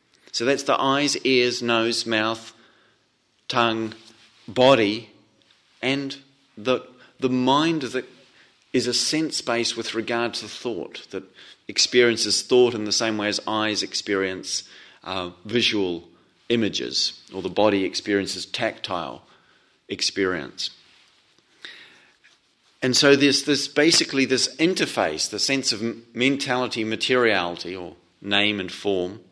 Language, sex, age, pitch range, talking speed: English, male, 40-59, 105-130 Hz, 115 wpm